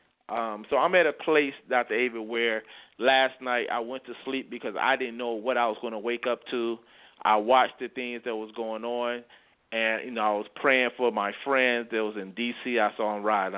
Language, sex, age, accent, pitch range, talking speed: English, male, 30-49, American, 110-130 Hz, 230 wpm